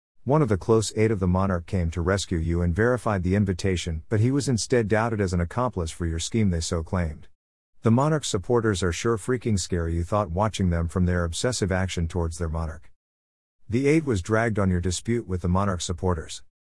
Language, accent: English, American